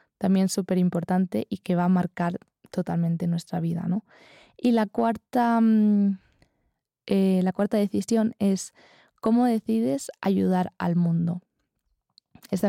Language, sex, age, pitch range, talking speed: Spanish, female, 20-39, 185-215 Hz, 125 wpm